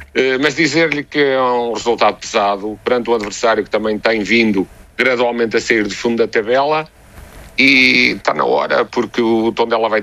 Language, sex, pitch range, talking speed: Portuguese, male, 100-125 Hz, 185 wpm